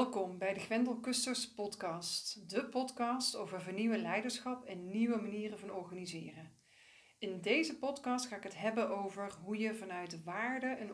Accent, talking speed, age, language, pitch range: Dutch, 165 wpm, 40-59, Dutch, 185-235 Hz